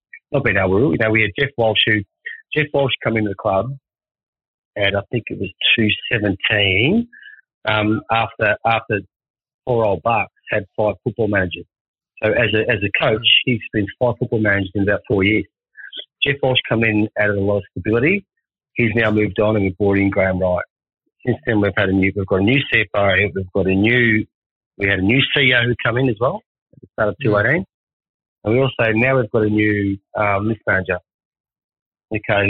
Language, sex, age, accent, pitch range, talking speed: English, male, 40-59, Australian, 100-120 Hz, 205 wpm